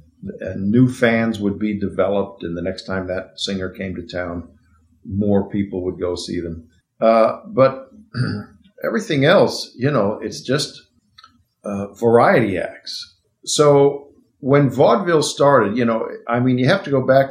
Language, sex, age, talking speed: English, male, 50-69, 155 wpm